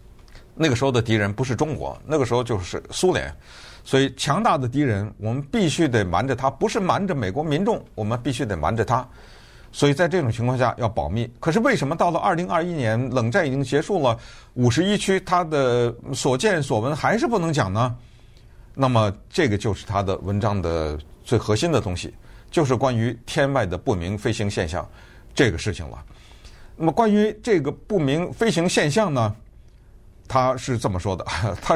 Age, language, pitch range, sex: 50-69, Chinese, 105-140 Hz, male